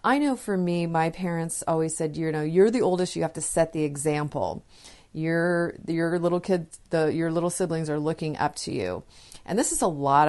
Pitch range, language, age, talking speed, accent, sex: 150-175 Hz, English, 30-49, 210 wpm, American, female